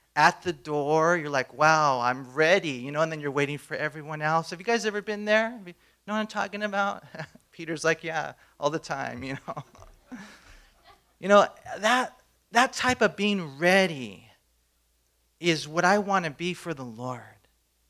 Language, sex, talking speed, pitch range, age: English, male, 180 wpm, 145-185 Hz, 40-59